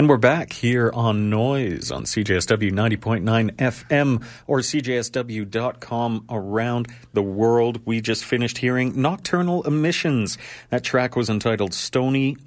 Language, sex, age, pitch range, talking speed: English, male, 40-59, 100-130 Hz, 125 wpm